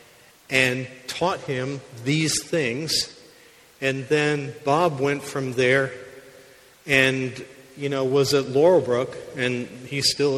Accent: American